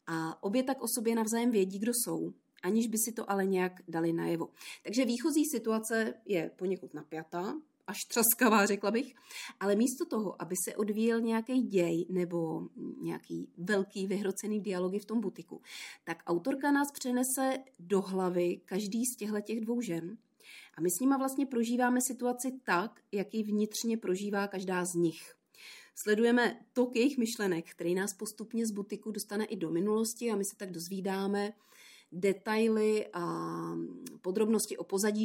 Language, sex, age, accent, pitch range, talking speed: Czech, female, 30-49, native, 185-240 Hz, 155 wpm